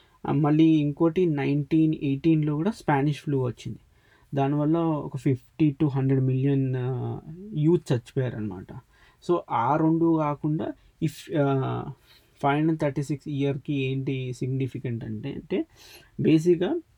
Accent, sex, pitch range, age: native, male, 130-155 Hz, 20-39